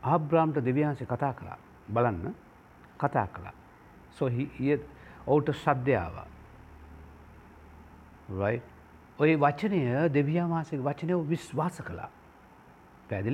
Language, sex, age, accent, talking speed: English, male, 60-79, Indian, 90 wpm